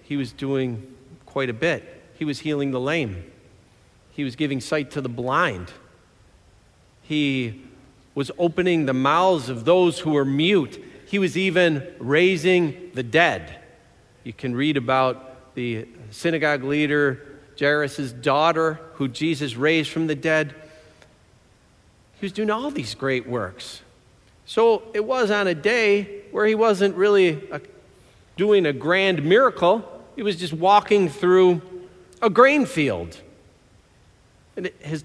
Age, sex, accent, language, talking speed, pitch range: 50-69, male, American, English, 135 wpm, 130-185 Hz